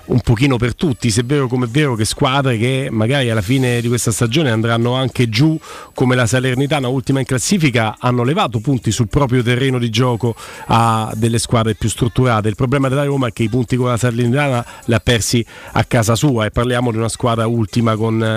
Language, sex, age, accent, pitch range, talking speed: Italian, male, 40-59, native, 120-155 Hz, 210 wpm